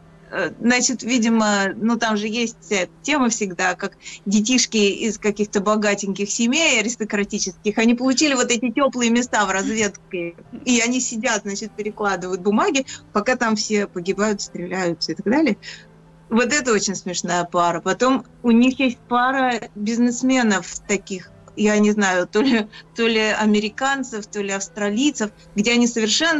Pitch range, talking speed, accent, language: 205-245 Hz, 145 wpm, native, Russian